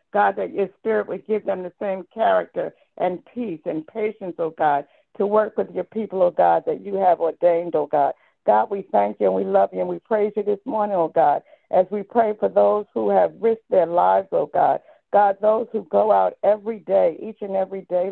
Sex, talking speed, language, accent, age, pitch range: female, 225 wpm, English, American, 60-79, 180-215 Hz